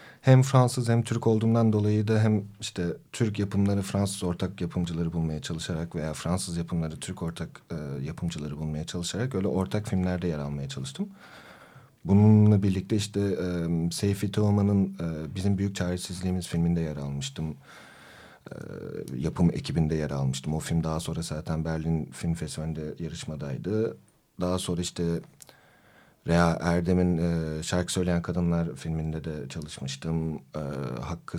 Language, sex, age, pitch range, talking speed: Turkish, male, 40-59, 85-105 Hz, 140 wpm